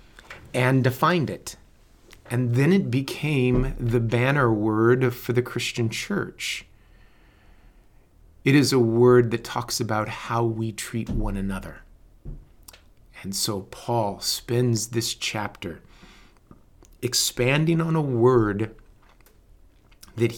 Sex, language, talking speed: male, English, 110 wpm